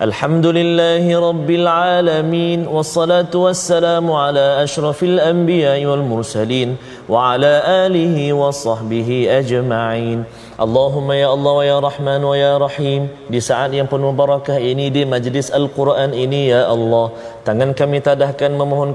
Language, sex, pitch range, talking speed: Malayalam, male, 130-165 Hz, 125 wpm